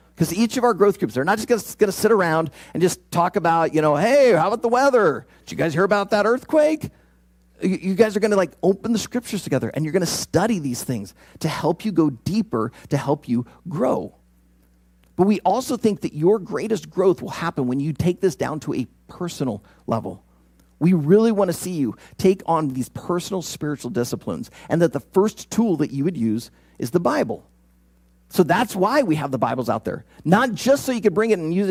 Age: 40-59